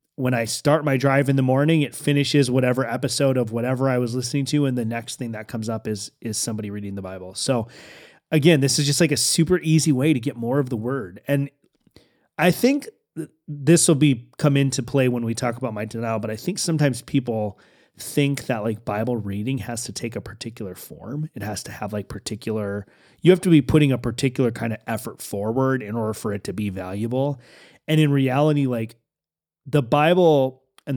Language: English